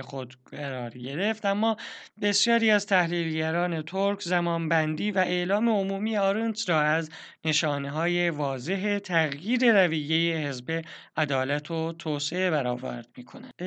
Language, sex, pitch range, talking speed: Persian, male, 150-195 Hz, 120 wpm